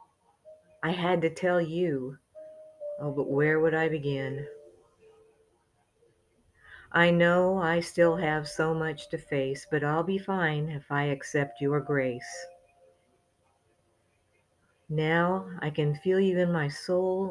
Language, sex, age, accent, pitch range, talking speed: English, female, 50-69, American, 140-190 Hz, 130 wpm